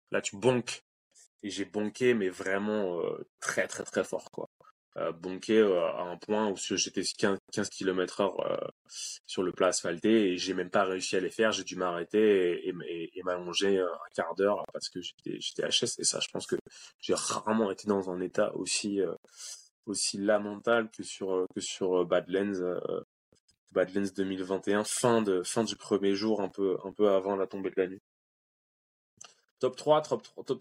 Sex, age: male, 20-39